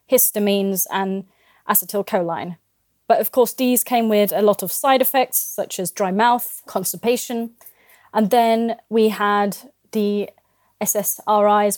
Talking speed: 125 wpm